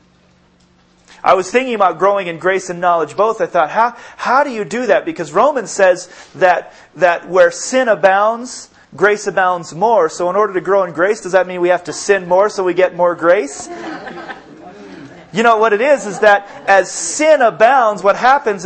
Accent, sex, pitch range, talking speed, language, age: American, male, 185-235 Hz, 195 wpm, English, 30-49